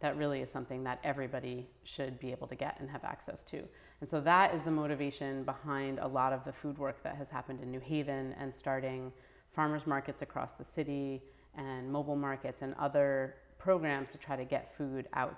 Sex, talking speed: female, 205 wpm